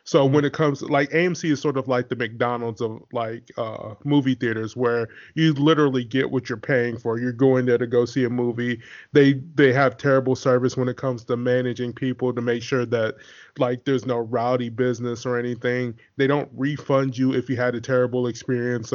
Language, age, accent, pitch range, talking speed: English, 20-39, American, 120-135 Hz, 205 wpm